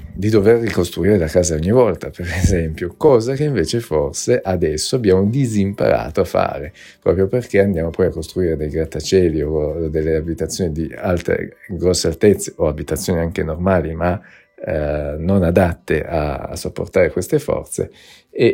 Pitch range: 80-95 Hz